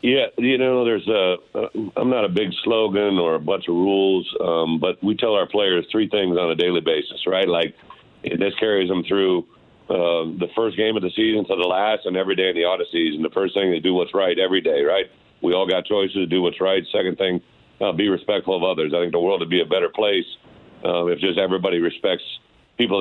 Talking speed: 235 wpm